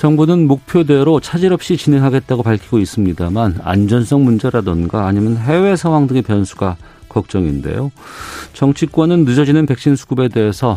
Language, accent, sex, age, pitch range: Korean, native, male, 40-59, 95-135 Hz